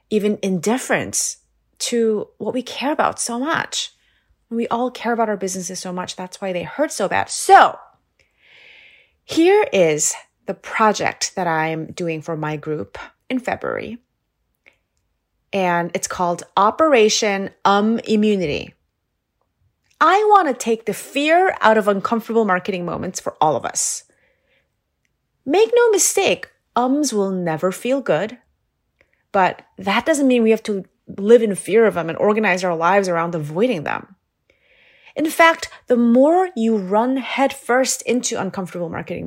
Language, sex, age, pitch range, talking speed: English, female, 30-49, 195-275 Hz, 145 wpm